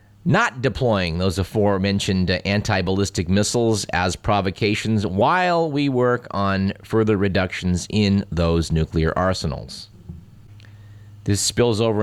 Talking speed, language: 110 wpm, English